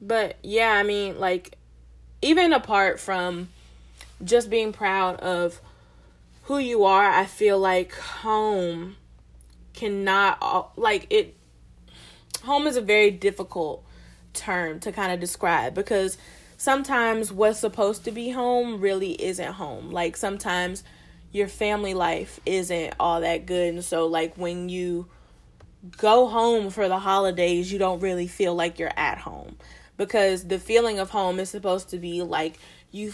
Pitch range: 175-205 Hz